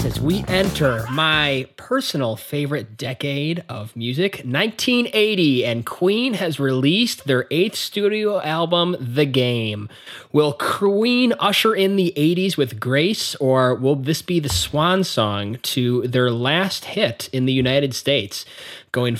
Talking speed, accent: 140 wpm, American